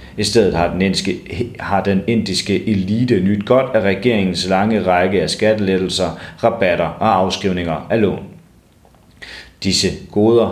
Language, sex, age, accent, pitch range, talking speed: Danish, male, 30-49, native, 90-115 Hz, 120 wpm